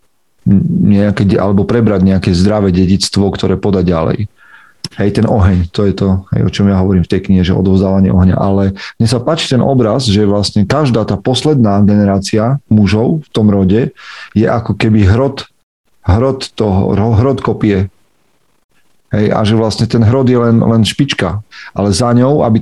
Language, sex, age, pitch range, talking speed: Slovak, male, 40-59, 100-120 Hz, 165 wpm